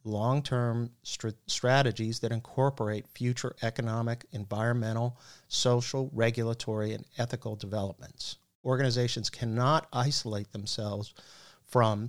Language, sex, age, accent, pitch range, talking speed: English, male, 50-69, American, 110-125 Hz, 85 wpm